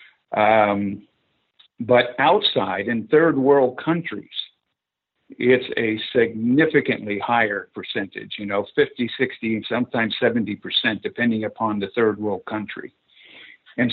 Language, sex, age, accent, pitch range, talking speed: English, male, 60-79, American, 110-130 Hz, 110 wpm